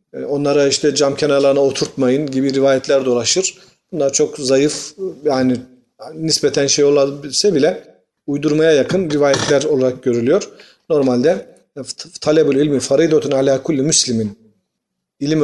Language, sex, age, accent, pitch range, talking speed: Turkish, male, 40-59, native, 135-175 Hz, 110 wpm